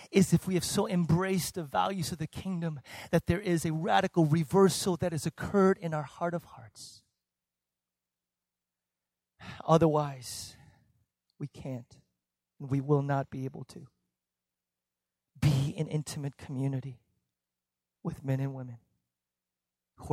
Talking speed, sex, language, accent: 130 wpm, male, English, American